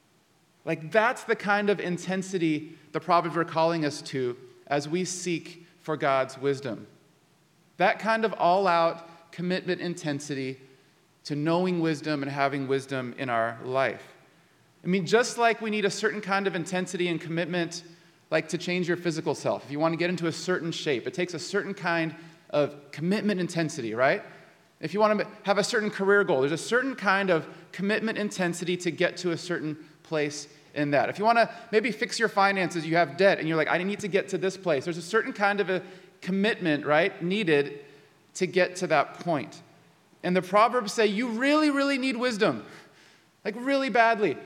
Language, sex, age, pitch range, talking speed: English, male, 30-49, 160-205 Hz, 190 wpm